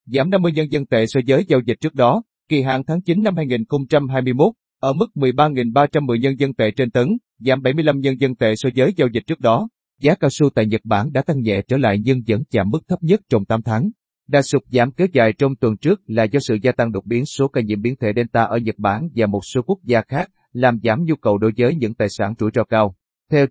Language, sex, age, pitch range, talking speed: Vietnamese, male, 30-49, 115-150 Hz, 255 wpm